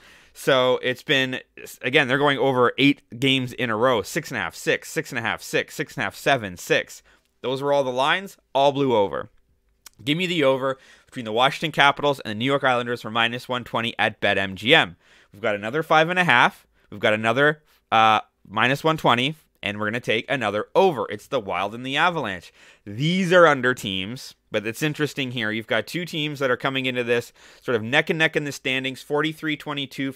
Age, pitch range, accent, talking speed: 30-49, 120-150 Hz, American, 210 wpm